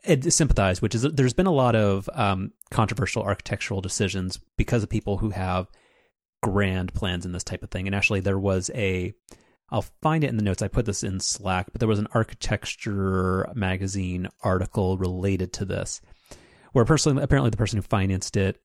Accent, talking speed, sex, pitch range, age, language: American, 185 wpm, male, 95-120 Hz, 30-49, English